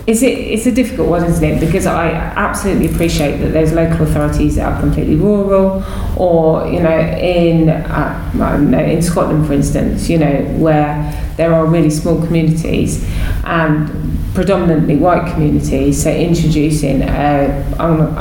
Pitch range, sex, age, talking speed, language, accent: 150-175 Hz, female, 20-39, 145 wpm, English, British